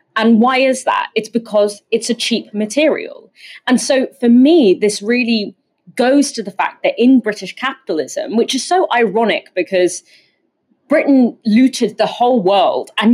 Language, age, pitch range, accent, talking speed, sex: English, 20-39, 190-255 Hz, British, 160 wpm, female